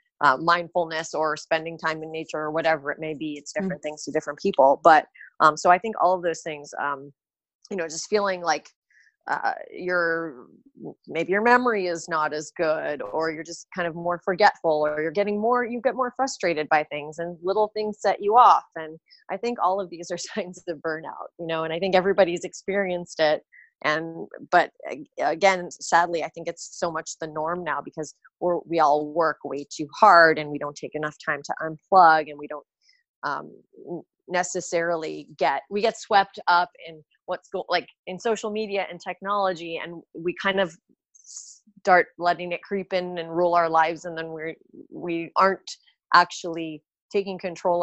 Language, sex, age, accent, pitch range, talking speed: English, female, 30-49, American, 160-190 Hz, 185 wpm